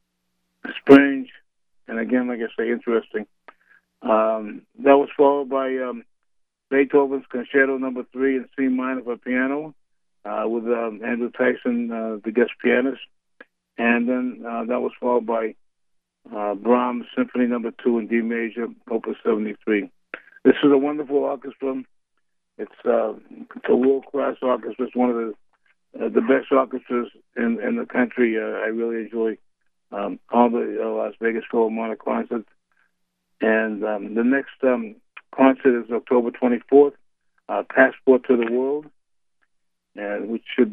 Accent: American